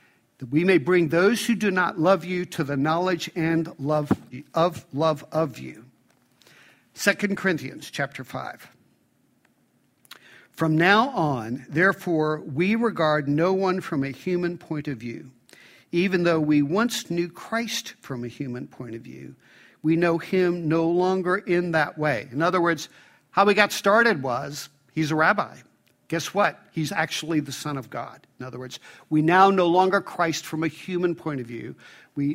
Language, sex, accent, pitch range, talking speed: English, male, American, 150-185 Hz, 170 wpm